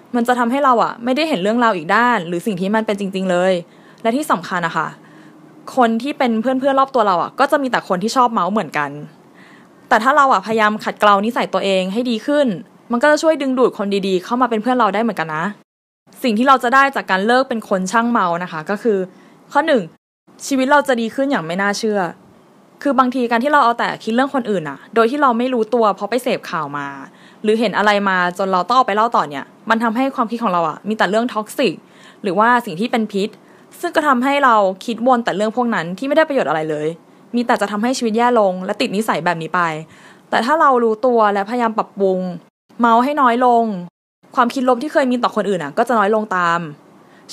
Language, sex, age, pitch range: Thai, female, 20-39, 195-255 Hz